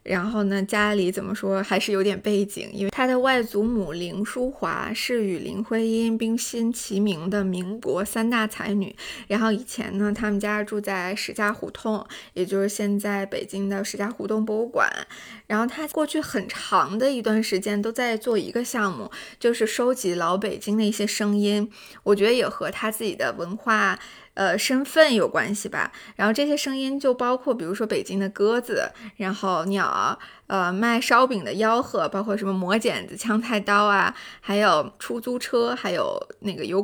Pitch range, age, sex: 200-240 Hz, 20-39, female